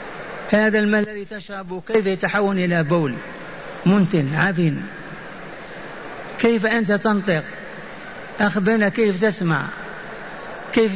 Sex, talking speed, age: male, 95 wpm, 60-79